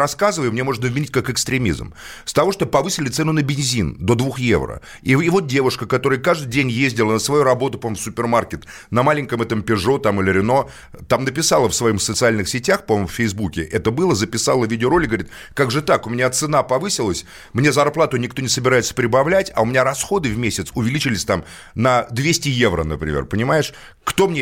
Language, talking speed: Russian, 195 wpm